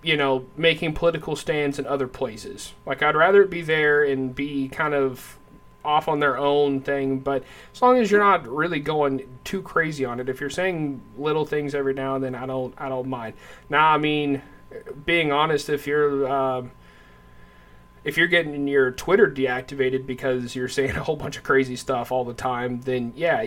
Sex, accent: male, American